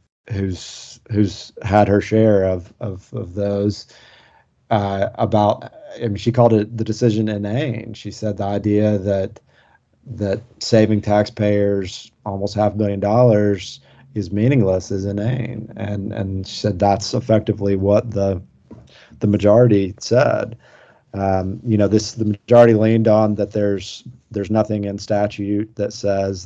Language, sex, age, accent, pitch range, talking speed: English, male, 30-49, American, 100-115 Hz, 145 wpm